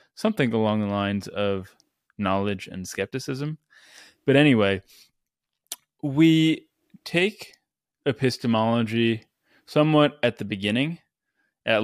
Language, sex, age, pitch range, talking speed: English, male, 20-39, 100-125 Hz, 90 wpm